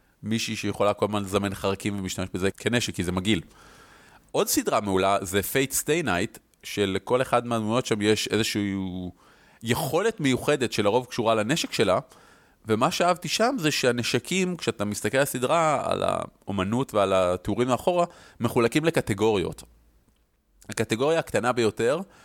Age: 30-49